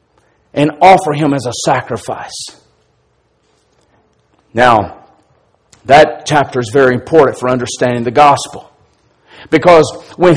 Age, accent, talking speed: 50-69, American, 105 wpm